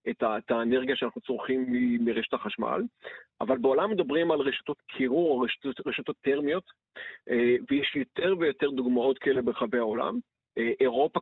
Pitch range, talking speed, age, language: 125-165 Hz, 155 wpm, 40-59, Hebrew